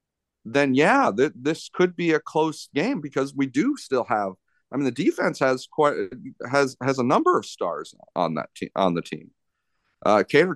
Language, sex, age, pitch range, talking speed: English, male, 40-59, 110-140 Hz, 195 wpm